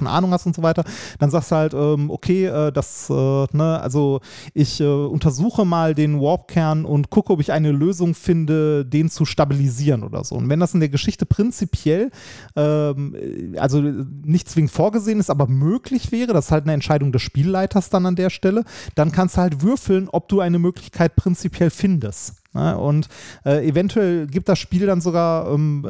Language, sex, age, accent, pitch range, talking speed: German, male, 30-49, German, 145-180 Hz, 180 wpm